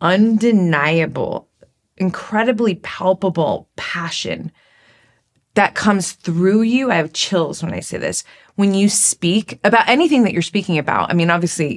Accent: American